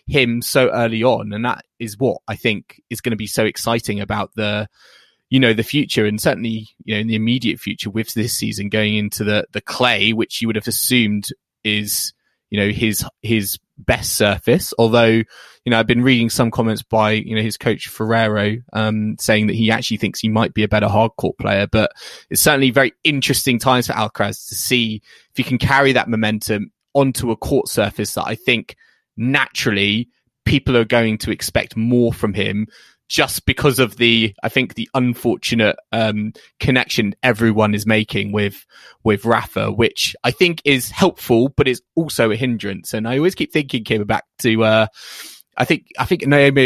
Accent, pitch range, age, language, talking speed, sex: British, 110-125 Hz, 20-39, English, 190 wpm, male